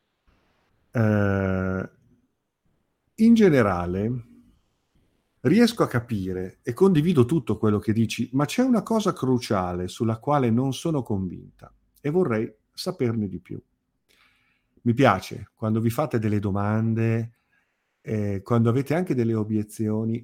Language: Italian